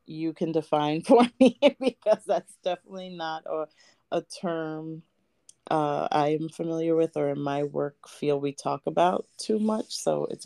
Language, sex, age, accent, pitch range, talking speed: English, female, 30-49, American, 145-170 Hz, 160 wpm